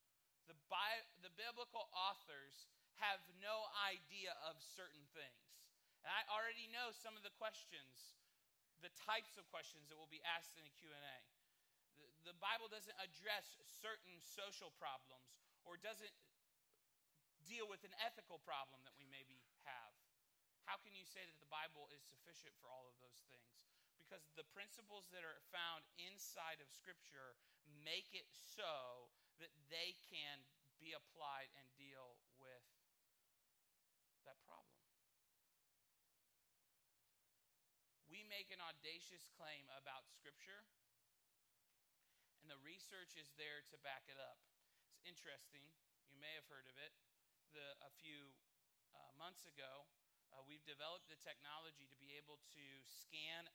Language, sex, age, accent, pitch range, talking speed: English, male, 30-49, American, 135-180 Hz, 135 wpm